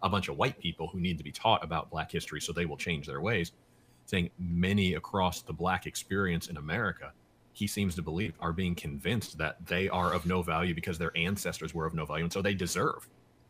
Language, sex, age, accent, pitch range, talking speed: English, male, 30-49, American, 80-95 Hz, 225 wpm